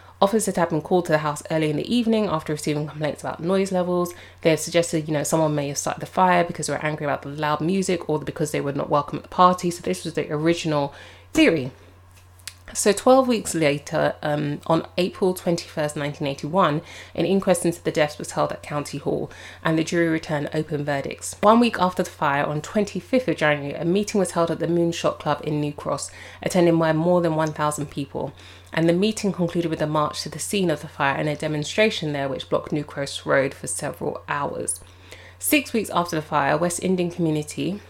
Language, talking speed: English, 215 wpm